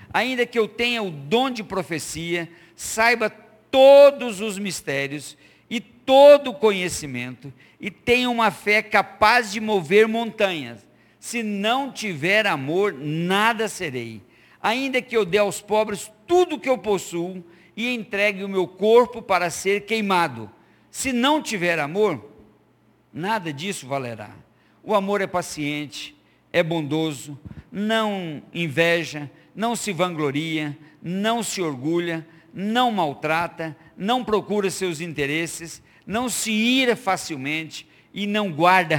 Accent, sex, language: Brazilian, male, Portuguese